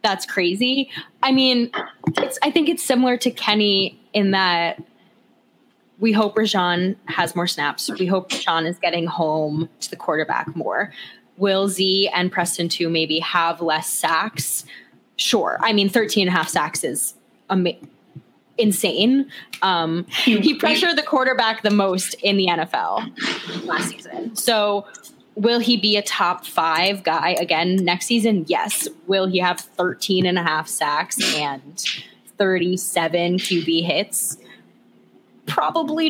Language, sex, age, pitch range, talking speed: English, female, 20-39, 170-220 Hz, 145 wpm